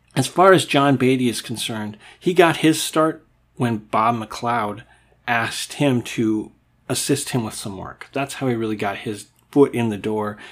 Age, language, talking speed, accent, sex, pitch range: 40-59, English, 185 wpm, American, male, 110-135 Hz